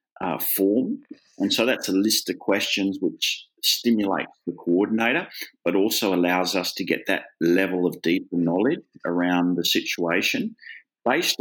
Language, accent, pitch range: English, Australian, 85-115 Hz